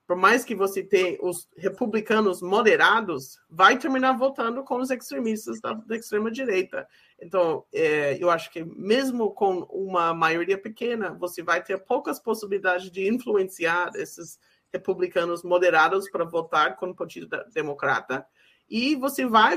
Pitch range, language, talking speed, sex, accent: 180-260 Hz, Portuguese, 145 wpm, male, Brazilian